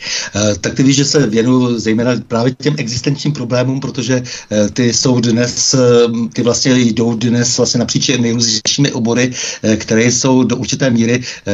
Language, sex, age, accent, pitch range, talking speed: Czech, male, 60-79, native, 120-130 Hz, 140 wpm